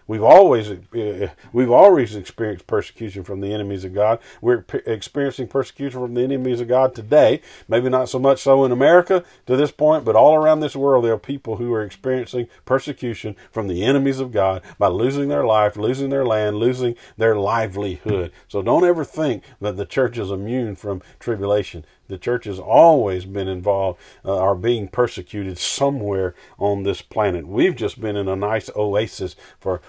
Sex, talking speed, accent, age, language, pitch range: male, 180 wpm, American, 50-69, English, 100-140 Hz